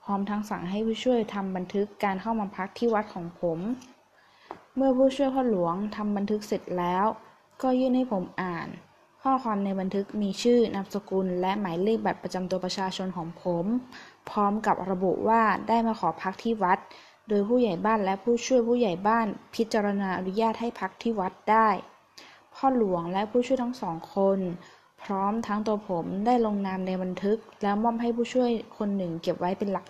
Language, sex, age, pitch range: Thai, female, 20-39, 185-230 Hz